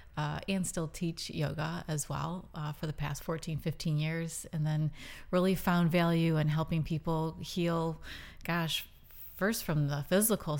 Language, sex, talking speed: English, female, 160 wpm